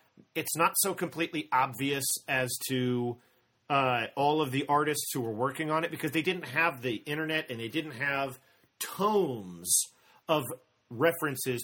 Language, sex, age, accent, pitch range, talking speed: English, male, 40-59, American, 115-155 Hz, 155 wpm